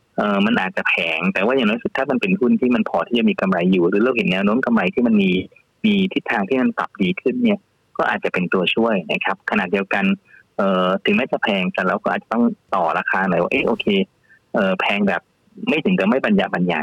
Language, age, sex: Thai, 20-39, male